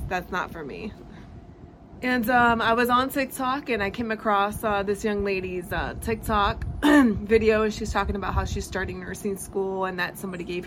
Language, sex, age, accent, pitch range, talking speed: English, female, 20-39, American, 180-230 Hz, 190 wpm